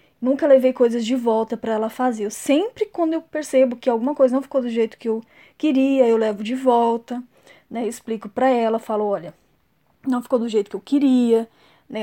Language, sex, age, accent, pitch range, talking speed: Portuguese, female, 10-29, Brazilian, 235-300 Hz, 205 wpm